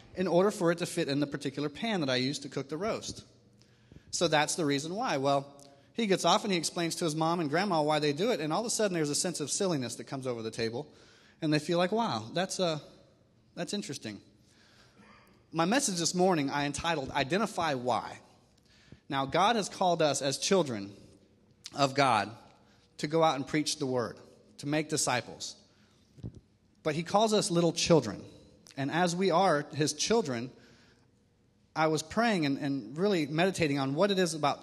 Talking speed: 195 wpm